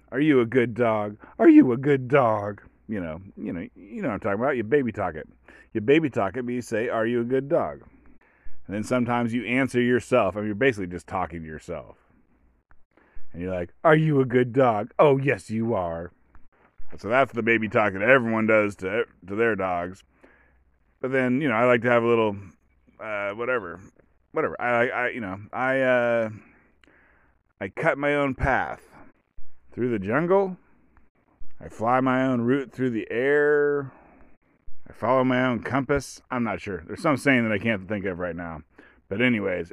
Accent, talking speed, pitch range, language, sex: American, 195 wpm, 95-125 Hz, English, male